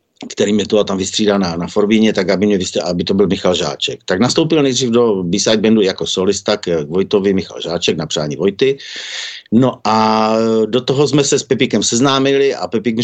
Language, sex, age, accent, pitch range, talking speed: Czech, male, 50-69, native, 100-120 Hz, 200 wpm